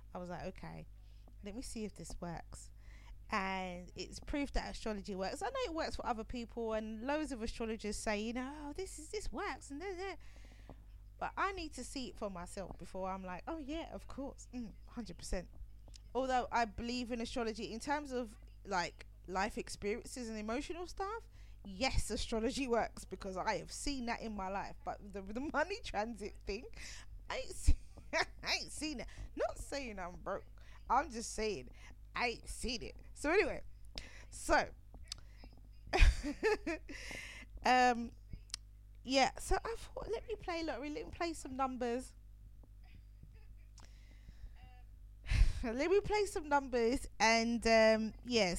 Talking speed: 155 wpm